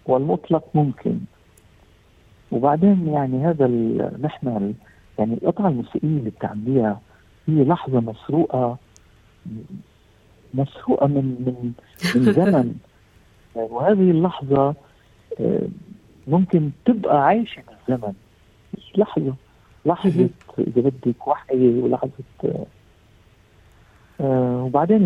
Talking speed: 85 wpm